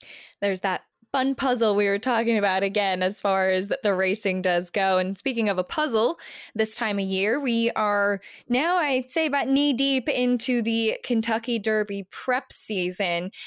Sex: female